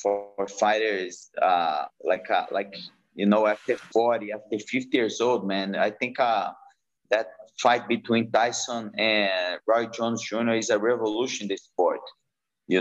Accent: Brazilian